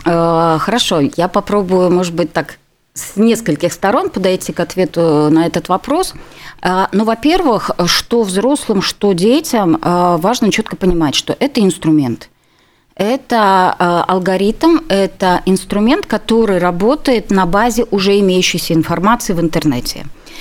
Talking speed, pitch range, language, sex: 120 wpm, 175-220 Hz, Russian, female